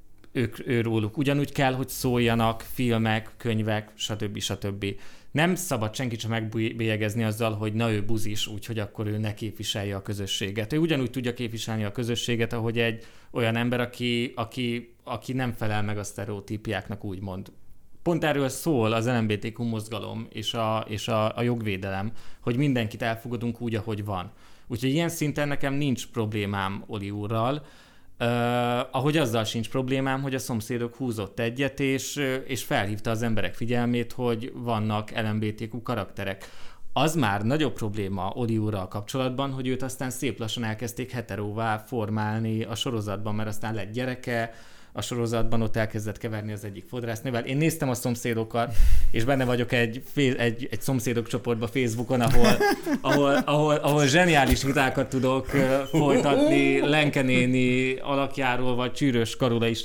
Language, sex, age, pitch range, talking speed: Hungarian, male, 20-39, 110-130 Hz, 145 wpm